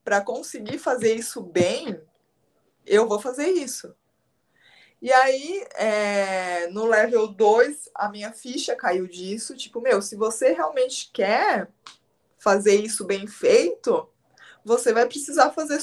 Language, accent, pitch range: Portuguese, Brazilian, 210-300 Hz